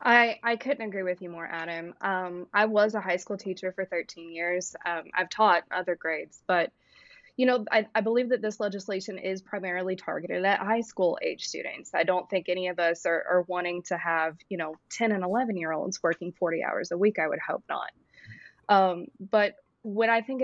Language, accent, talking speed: English, American, 210 wpm